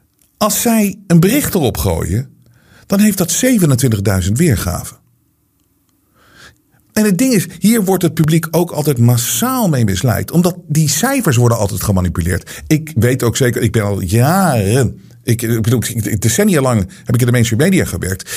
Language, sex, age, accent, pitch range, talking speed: Dutch, male, 50-69, Dutch, 115-170 Hz, 165 wpm